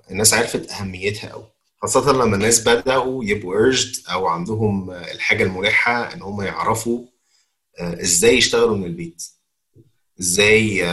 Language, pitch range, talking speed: Arabic, 90-110 Hz, 120 wpm